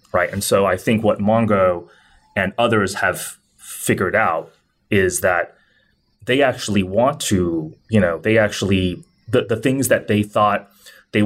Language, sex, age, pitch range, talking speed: English, male, 30-49, 95-110 Hz, 155 wpm